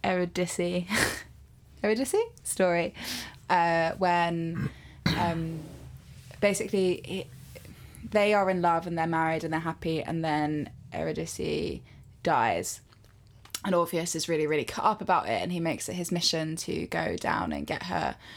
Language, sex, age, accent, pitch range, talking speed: English, female, 20-39, British, 160-180 Hz, 135 wpm